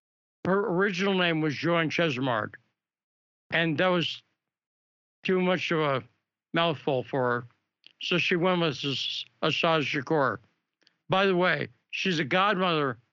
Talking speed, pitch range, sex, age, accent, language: 130 wpm, 130-180 Hz, male, 60-79, American, English